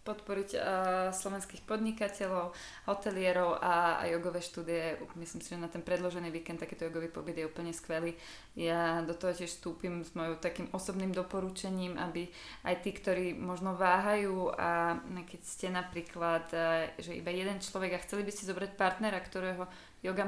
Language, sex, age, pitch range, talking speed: Slovak, female, 20-39, 170-190 Hz, 165 wpm